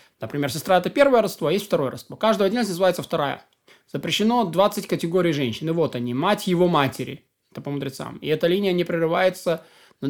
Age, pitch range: 20-39, 150-185 Hz